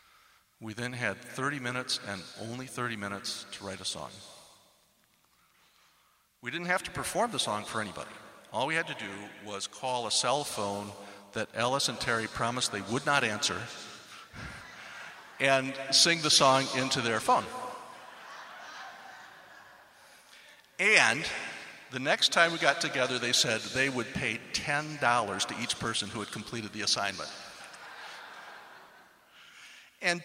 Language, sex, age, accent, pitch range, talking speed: English, male, 50-69, American, 105-135 Hz, 140 wpm